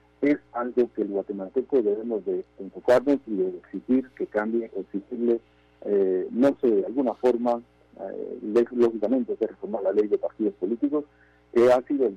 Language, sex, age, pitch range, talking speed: Spanish, male, 50-69, 105-150 Hz, 165 wpm